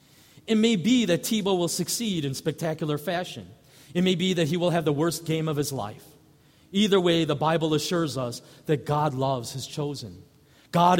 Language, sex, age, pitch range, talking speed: English, male, 40-59, 140-180 Hz, 190 wpm